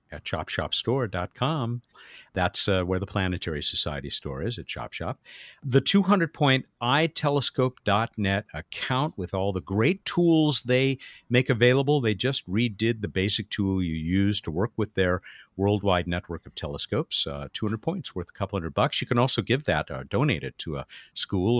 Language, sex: English, male